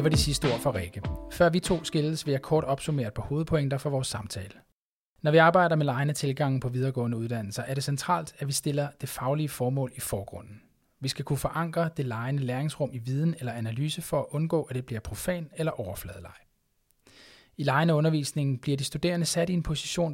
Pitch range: 120-155 Hz